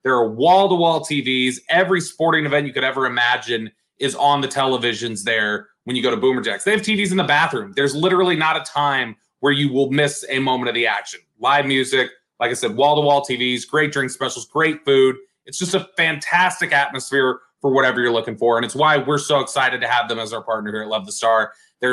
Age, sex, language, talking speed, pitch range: 30-49, male, English, 225 wpm, 120-150 Hz